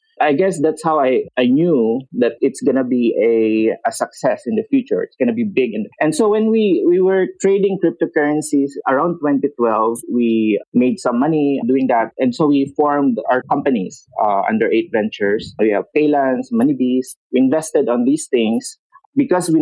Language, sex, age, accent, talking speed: English, male, 30-49, Filipino, 185 wpm